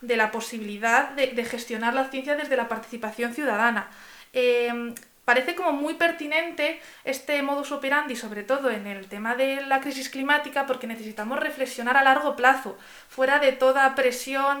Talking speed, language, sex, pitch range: 160 wpm, Spanish, female, 235-275 Hz